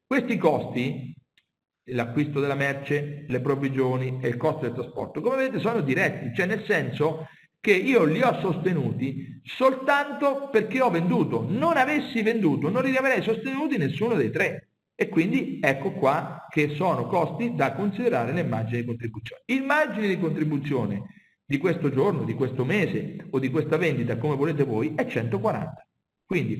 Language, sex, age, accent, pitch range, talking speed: Italian, male, 50-69, native, 135-220 Hz, 160 wpm